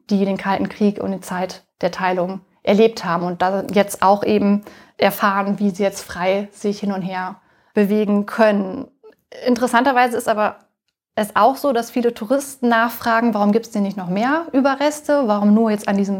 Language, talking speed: German, 180 wpm